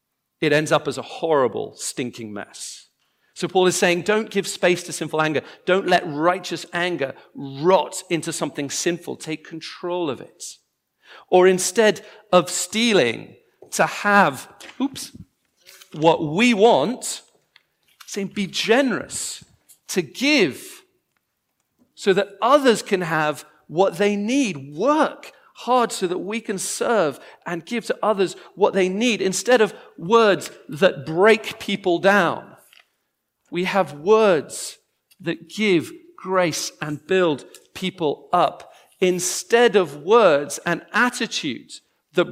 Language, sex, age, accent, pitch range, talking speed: English, male, 40-59, British, 165-215 Hz, 130 wpm